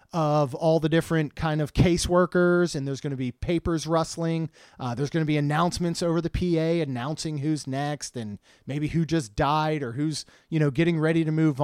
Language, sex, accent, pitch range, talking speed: English, male, American, 140-175 Hz, 200 wpm